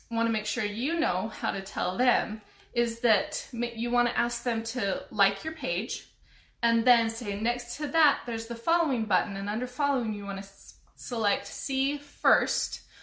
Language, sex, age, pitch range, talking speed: English, female, 20-39, 210-255 Hz, 185 wpm